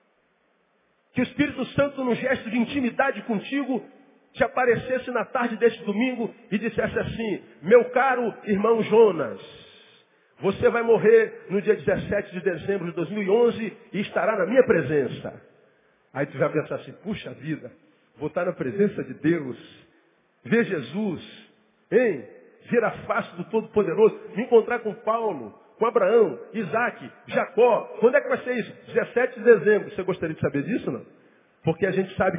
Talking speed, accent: 155 wpm, Brazilian